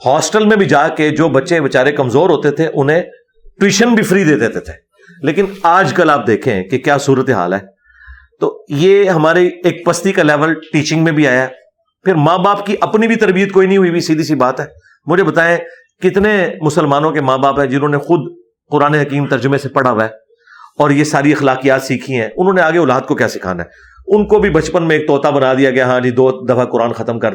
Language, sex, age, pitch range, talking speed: Urdu, male, 40-59, 115-160 Hz, 230 wpm